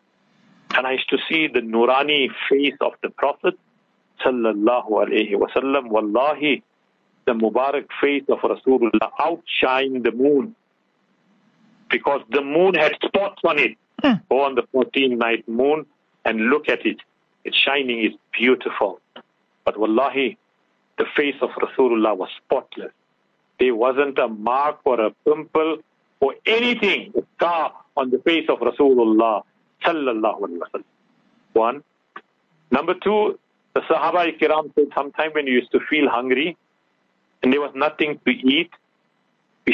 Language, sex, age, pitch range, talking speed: English, male, 60-79, 130-195 Hz, 130 wpm